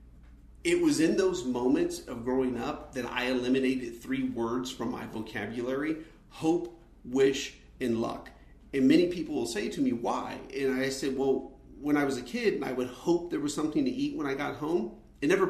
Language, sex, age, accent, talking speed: English, male, 40-59, American, 200 wpm